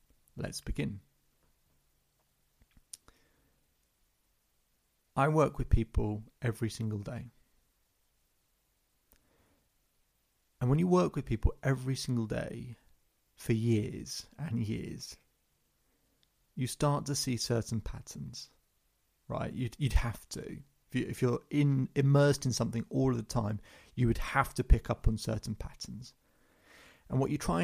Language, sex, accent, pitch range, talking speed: English, male, British, 110-130 Hz, 120 wpm